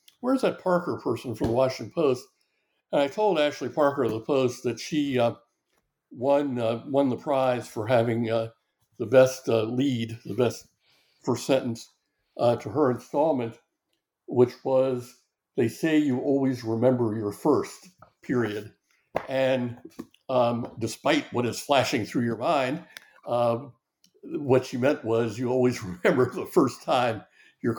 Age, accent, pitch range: 60-79, American, 115-135 Hz